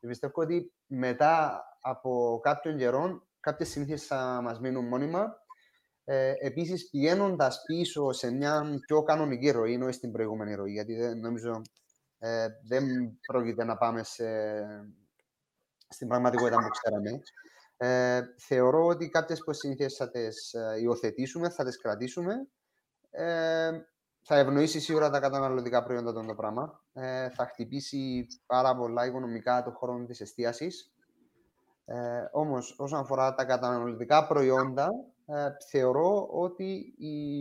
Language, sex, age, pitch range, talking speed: Greek, male, 30-49, 120-155 Hz, 130 wpm